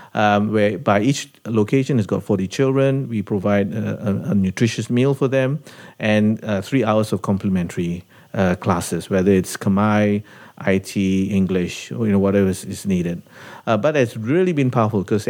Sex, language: male, English